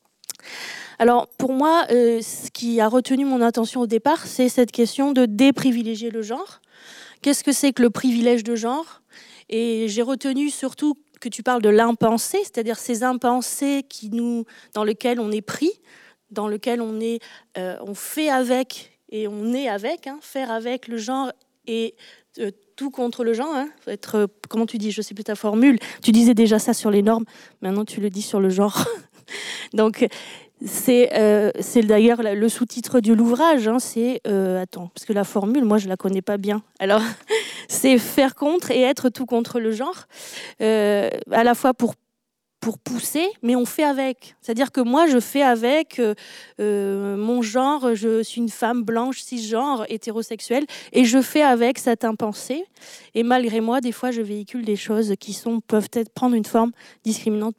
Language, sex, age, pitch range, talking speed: French, female, 20-39, 220-255 Hz, 185 wpm